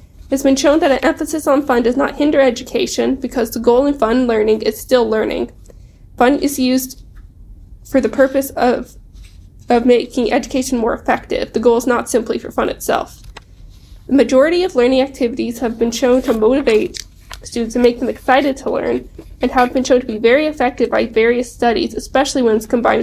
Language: English